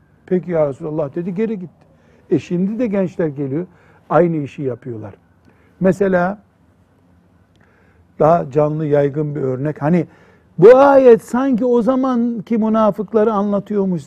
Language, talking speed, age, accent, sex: Turkish, 120 wpm, 60-79, native, male